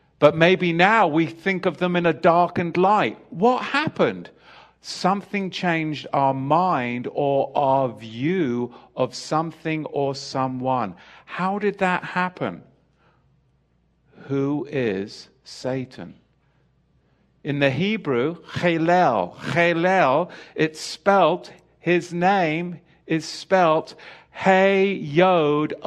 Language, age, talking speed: English, 50-69, 100 wpm